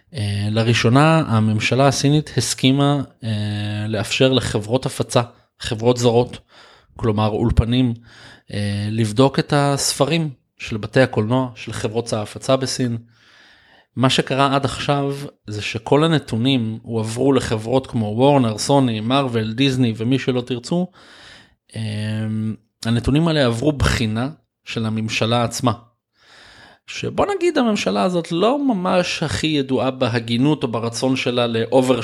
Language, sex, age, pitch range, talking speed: Hebrew, male, 20-39, 110-135 Hz, 115 wpm